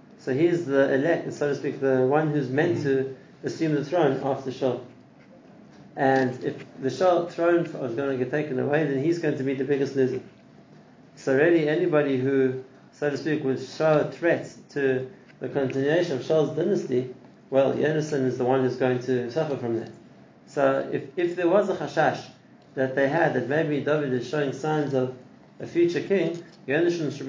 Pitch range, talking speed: 130-155 Hz, 190 wpm